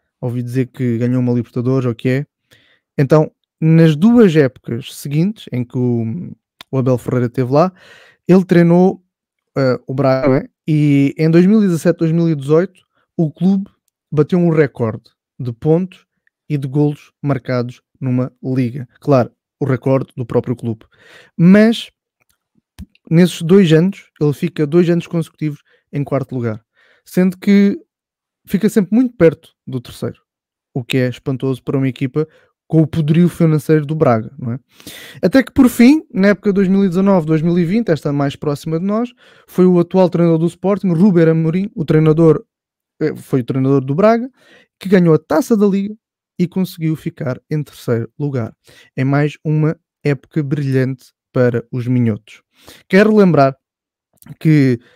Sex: male